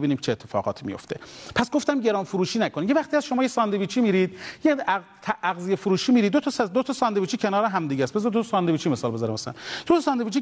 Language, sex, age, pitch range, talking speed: Persian, male, 40-59, 165-260 Hz, 230 wpm